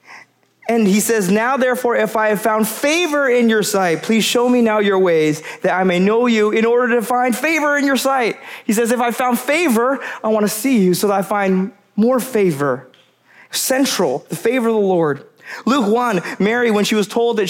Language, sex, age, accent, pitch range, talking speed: English, male, 20-39, American, 190-245 Hz, 215 wpm